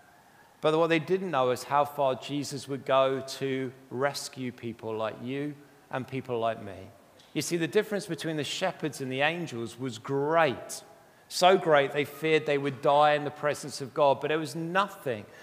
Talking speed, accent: 185 wpm, British